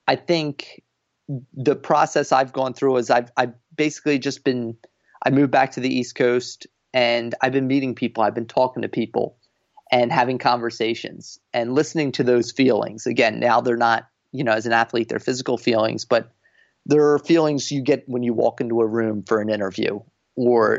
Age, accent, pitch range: 30-49, American, 115-135 Hz